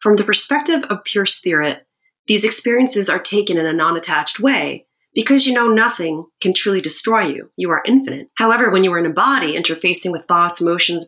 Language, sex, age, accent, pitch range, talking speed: English, female, 30-49, American, 165-205 Hz, 195 wpm